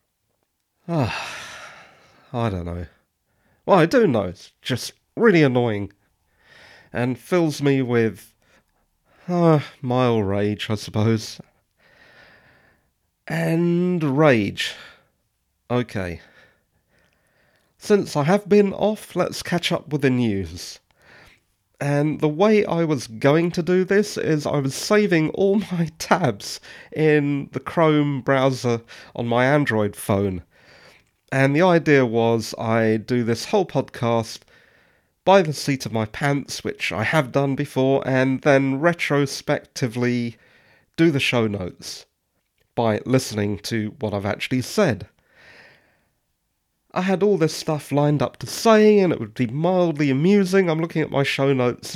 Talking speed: 130 wpm